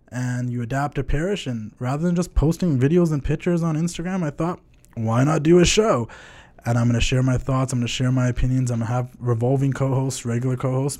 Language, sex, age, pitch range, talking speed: English, male, 20-39, 125-155 Hz, 235 wpm